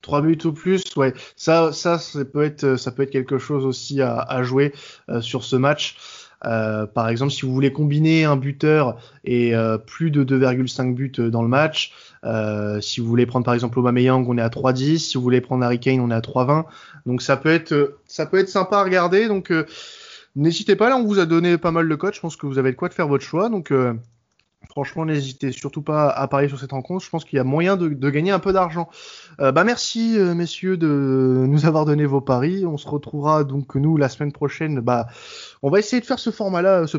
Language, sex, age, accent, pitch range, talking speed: French, male, 20-39, French, 125-165 Hz, 240 wpm